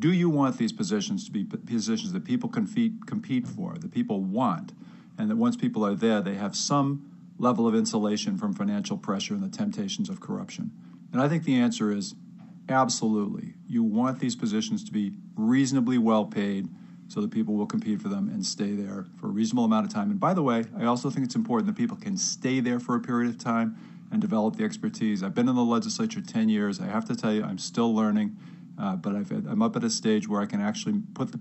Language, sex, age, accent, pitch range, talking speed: English, male, 50-69, American, 170-220 Hz, 225 wpm